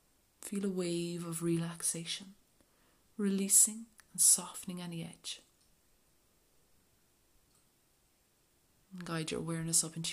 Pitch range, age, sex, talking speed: 165-195 Hz, 30-49, female, 90 wpm